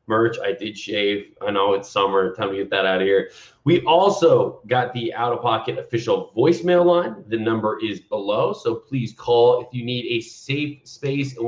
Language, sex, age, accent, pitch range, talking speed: English, male, 30-49, American, 115-160 Hz, 195 wpm